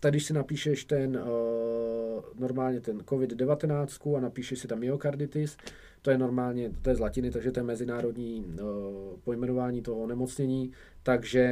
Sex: male